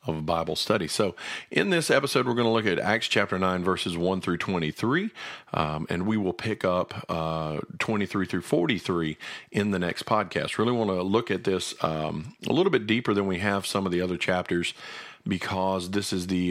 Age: 50-69